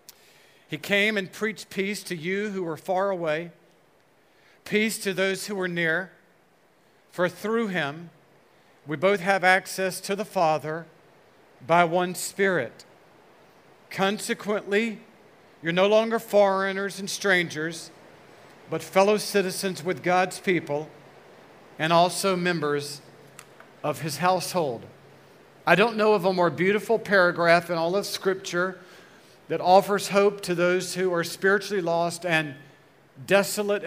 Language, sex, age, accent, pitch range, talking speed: English, male, 50-69, American, 160-195 Hz, 130 wpm